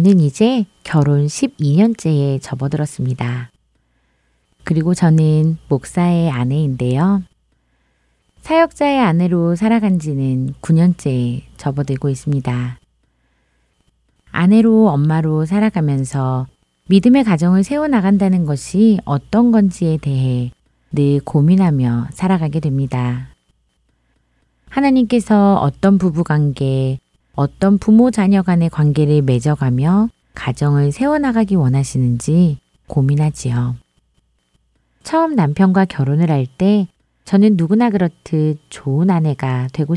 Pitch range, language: 125-190 Hz, Korean